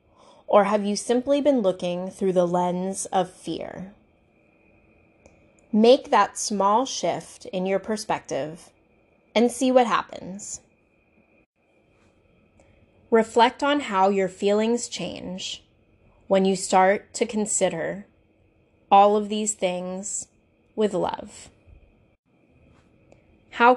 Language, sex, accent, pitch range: English, female, American, 185-235 Hz